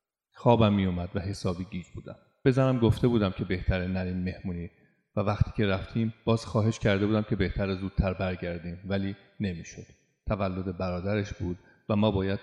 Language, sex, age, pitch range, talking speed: Persian, male, 40-59, 95-115 Hz, 165 wpm